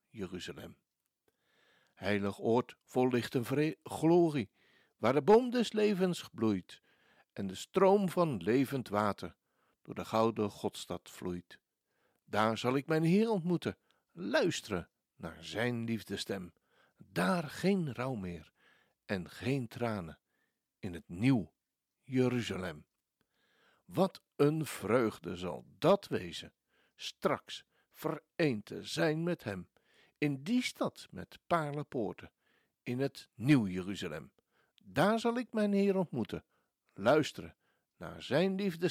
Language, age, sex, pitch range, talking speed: Dutch, 60-79, male, 105-170 Hz, 120 wpm